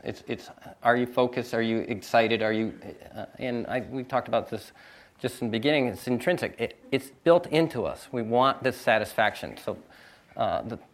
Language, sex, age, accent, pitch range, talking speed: English, male, 40-59, American, 110-140 Hz, 190 wpm